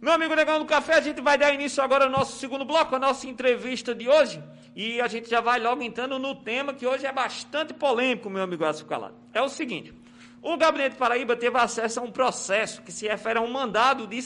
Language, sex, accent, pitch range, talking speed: Portuguese, male, Brazilian, 210-265 Hz, 240 wpm